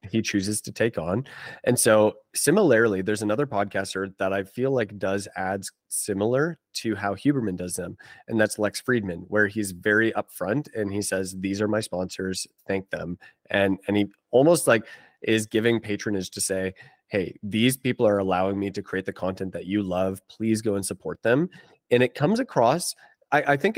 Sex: male